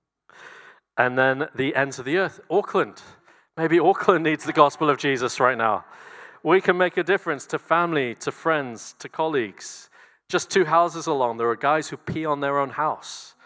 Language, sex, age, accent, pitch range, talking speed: English, male, 40-59, British, 125-160 Hz, 185 wpm